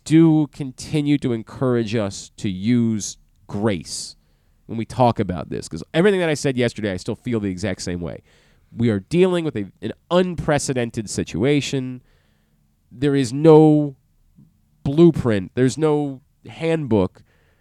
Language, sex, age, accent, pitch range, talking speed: English, male, 30-49, American, 105-150 Hz, 135 wpm